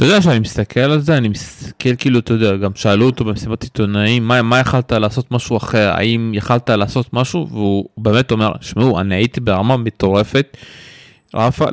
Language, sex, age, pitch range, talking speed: Hebrew, male, 20-39, 115-155 Hz, 180 wpm